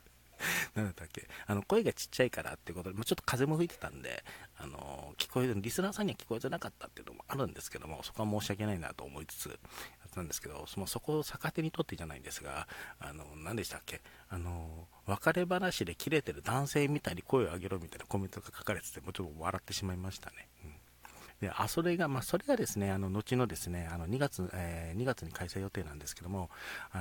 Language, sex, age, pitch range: Japanese, male, 40-59, 90-130 Hz